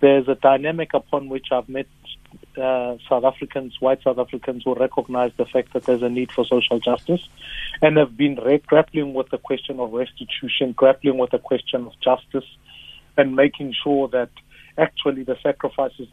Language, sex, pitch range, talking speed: English, male, 130-165 Hz, 170 wpm